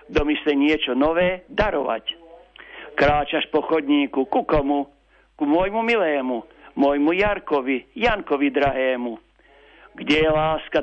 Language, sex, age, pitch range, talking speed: Slovak, male, 60-79, 145-185 Hz, 110 wpm